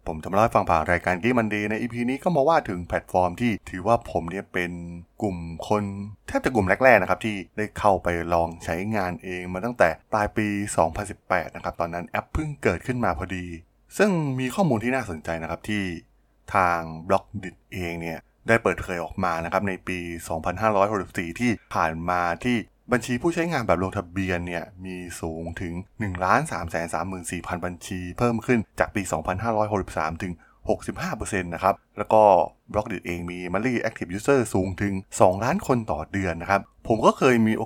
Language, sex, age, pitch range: Thai, male, 20-39, 85-110 Hz